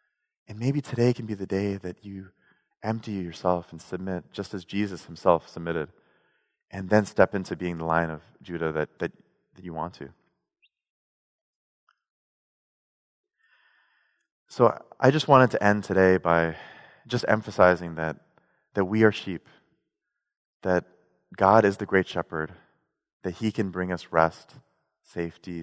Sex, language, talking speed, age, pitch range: male, English, 145 wpm, 30-49, 90-120 Hz